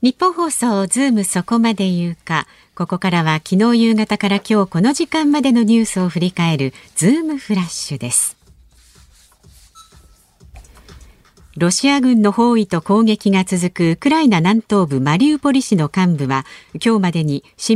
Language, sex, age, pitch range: Japanese, female, 50-69, 165-250 Hz